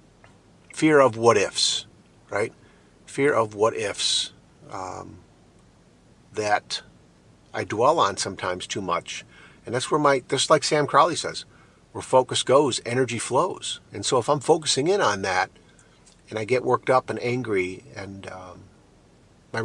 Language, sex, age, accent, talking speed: English, male, 50-69, American, 140 wpm